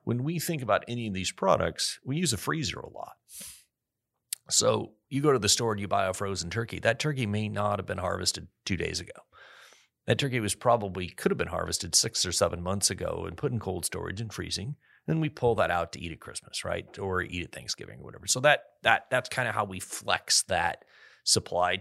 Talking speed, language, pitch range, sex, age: 230 wpm, English, 90-110 Hz, male, 30-49